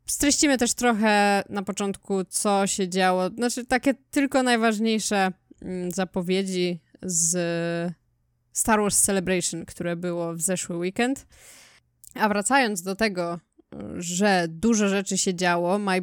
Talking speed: 120 wpm